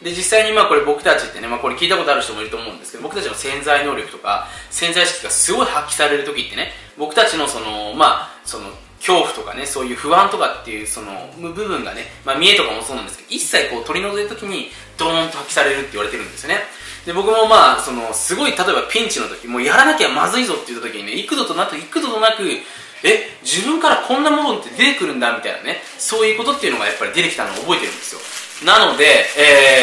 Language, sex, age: Japanese, male, 20-39